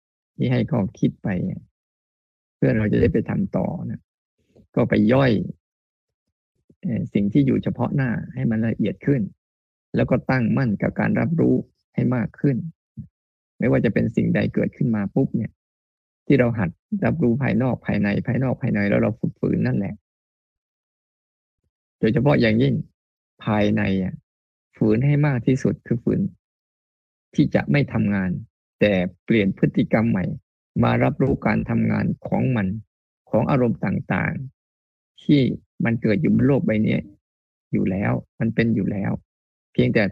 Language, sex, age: Thai, male, 20-39